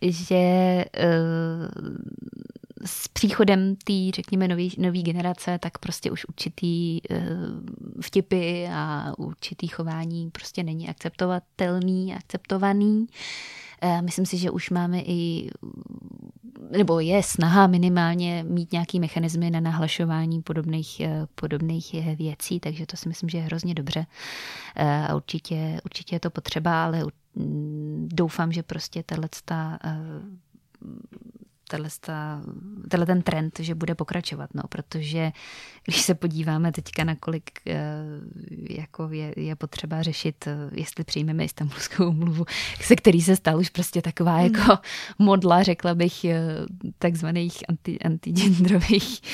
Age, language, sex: 20-39, Czech, female